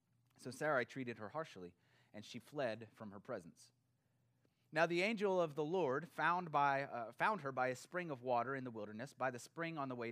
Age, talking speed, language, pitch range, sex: 30-49, 215 wpm, English, 120-150 Hz, male